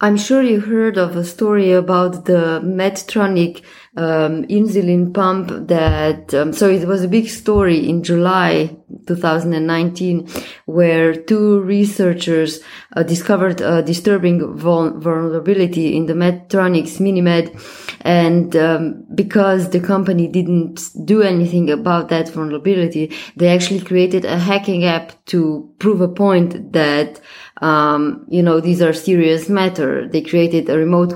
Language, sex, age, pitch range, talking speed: English, female, 20-39, 165-195 Hz, 135 wpm